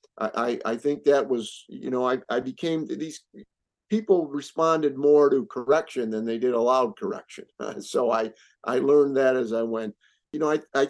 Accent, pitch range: American, 125-160 Hz